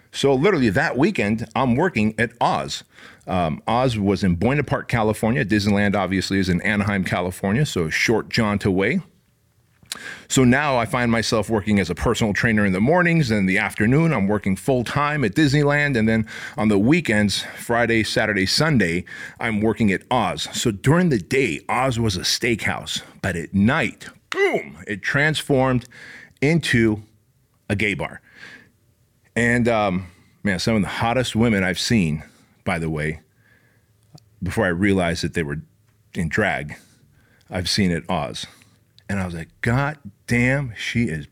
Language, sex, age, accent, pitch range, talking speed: English, male, 40-59, American, 100-125 Hz, 160 wpm